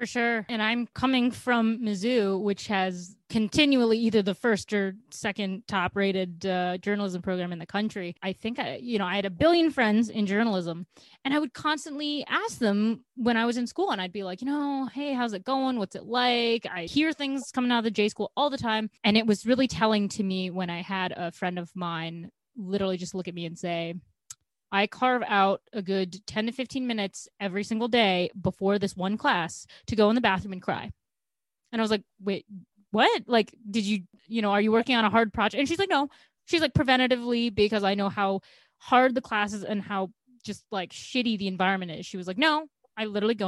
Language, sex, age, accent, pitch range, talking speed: English, female, 20-39, American, 190-245 Hz, 225 wpm